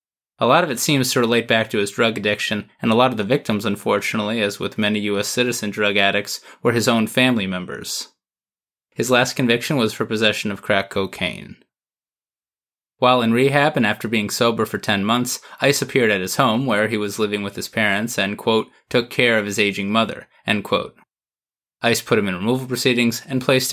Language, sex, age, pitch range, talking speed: English, male, 20-39, 105-125 Hz, 200 wpm